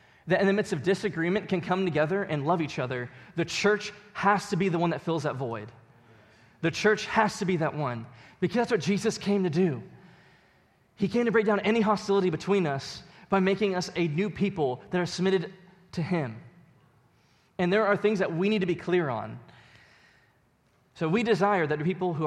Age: 20-39